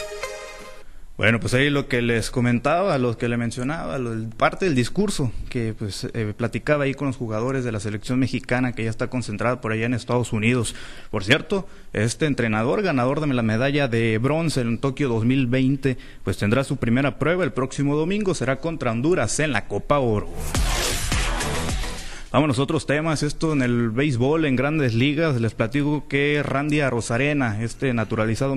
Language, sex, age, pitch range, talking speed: Spanish, male, 30-49, 115-145 Hz, 170 wpm